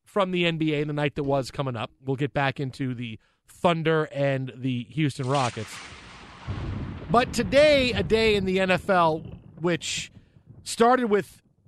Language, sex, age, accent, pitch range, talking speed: English, male, 40-59, American, 140-180 Hz, 150 wpm